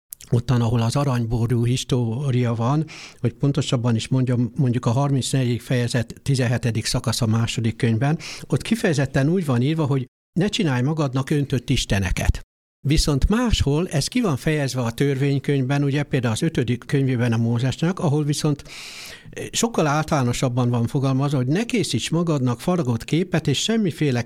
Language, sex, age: Hungarian, male, 60-79